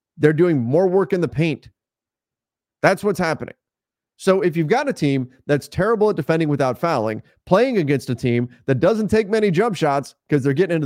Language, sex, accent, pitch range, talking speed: English, male, American, 140-190 Hz, 200 wpm